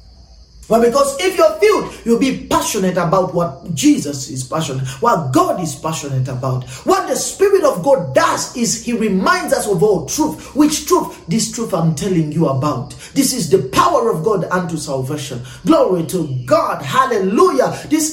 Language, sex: English, male